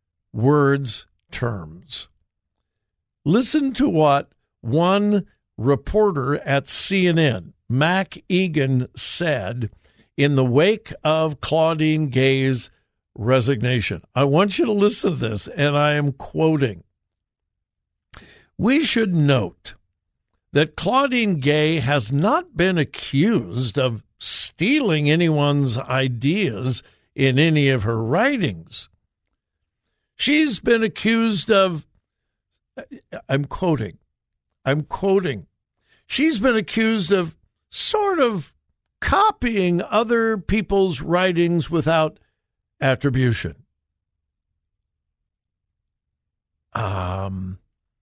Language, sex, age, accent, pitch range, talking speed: English, male, 60-79, American, 110-175 Hz, 85 wpm